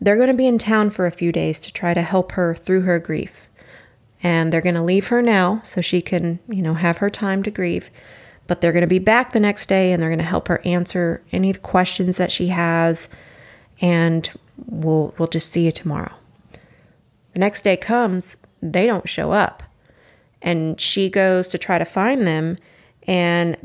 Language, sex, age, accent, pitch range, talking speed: English, female, 30-49, American, 165-205 Hz, 205 wpm